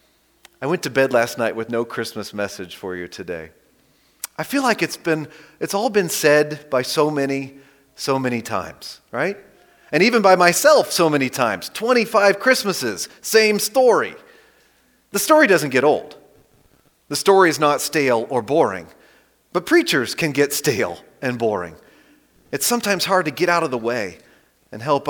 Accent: American